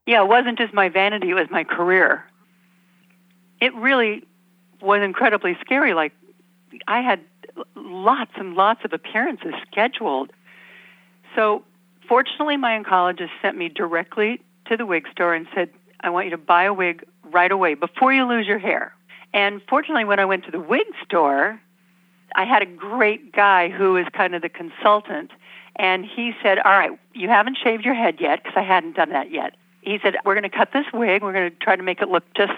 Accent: American